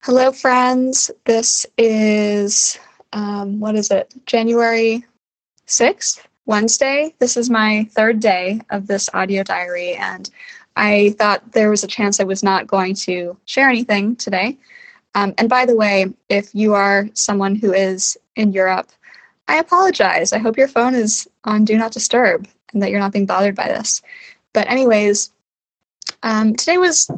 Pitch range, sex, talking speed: 195-250 Hz, female, 160 wpm